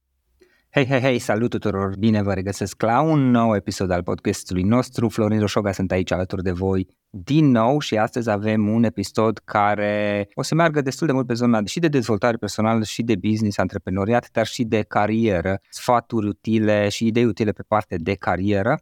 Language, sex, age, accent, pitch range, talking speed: Romanian, male, 20-39, native, 100-120 Hz, 190 wpm